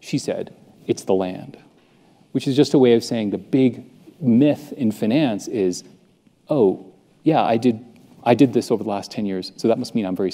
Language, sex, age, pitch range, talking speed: English, male, 40-59, 105-135 Hz, 205 wpm